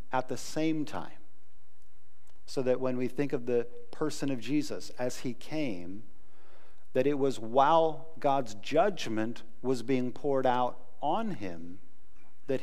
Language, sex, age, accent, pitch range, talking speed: English, male, 50-69, American, 105-150 Hz, 145 wpm